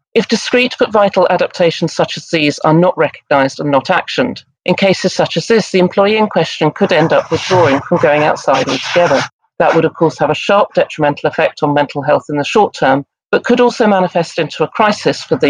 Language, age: English, 40-59